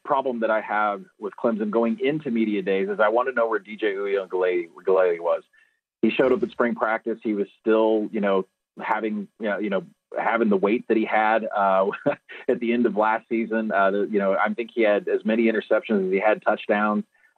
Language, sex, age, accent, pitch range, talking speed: English, male, 30-49, American, 105-130 Hz, 220 wpm